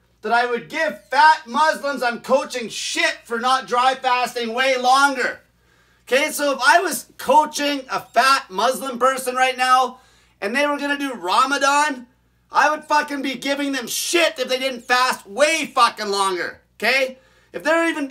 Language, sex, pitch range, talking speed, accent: English, male, 240-280 Hz, 170 wpm, American